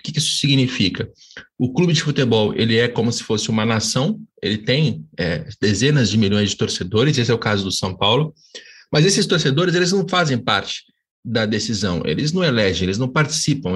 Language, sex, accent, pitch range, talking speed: Portuguese, male, Brazilian, 125-175 Hz, 185 wpm